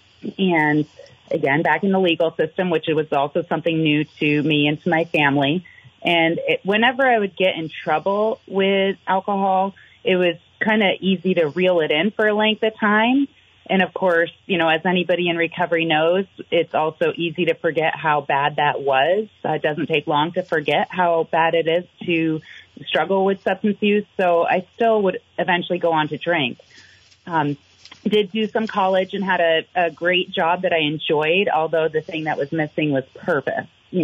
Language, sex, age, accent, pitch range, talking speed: English, female, 30-49, American, 150-185 Hz, 195 wpm